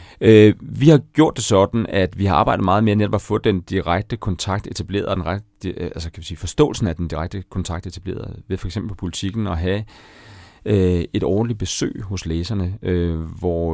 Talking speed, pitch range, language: 180 wpm, 85-110 Hz, Danish